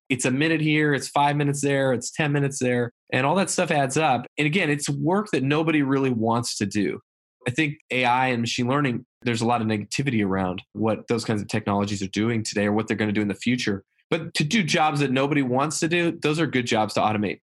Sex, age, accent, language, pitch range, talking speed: male, 20-39, American, English, 110-135 Hz, 245 wpm